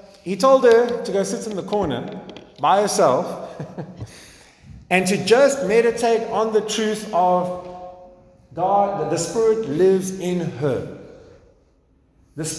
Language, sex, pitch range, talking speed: English, male, 180-240 Hz, 130 wpm